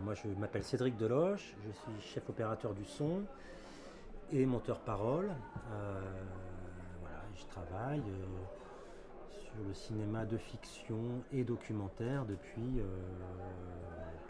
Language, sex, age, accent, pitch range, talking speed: French, male, 40-59, French, 95-125 Hz, 115 wpm